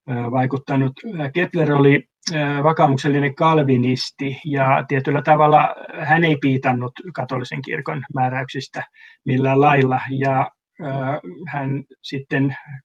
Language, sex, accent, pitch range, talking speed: Finnish, male, native, 130-150 Hz, 90 wpm